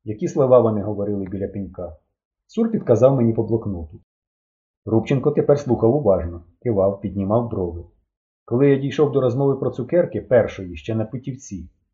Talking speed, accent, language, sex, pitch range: 145 wpm, native, Ukrainian, male, 90-135 Hz